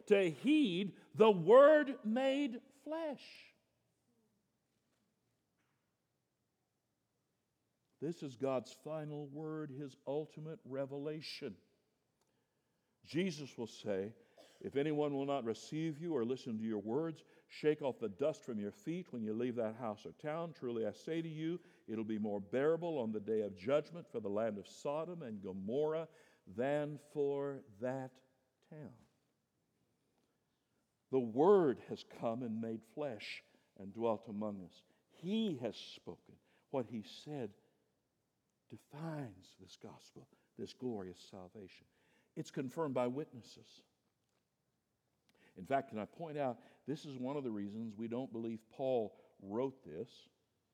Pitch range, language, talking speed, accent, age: 115-155 Hz, English, 130 wpm, American, 60-79